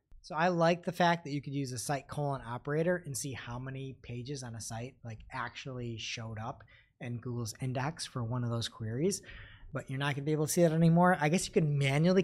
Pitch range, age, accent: 125-165 Hz, 30-49, American